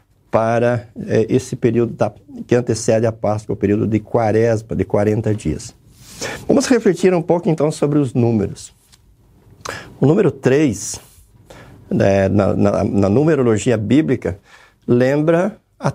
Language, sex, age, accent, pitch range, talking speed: Portuguese, male, 50-69, Brazilian, 110-145 Hz, 130 wpm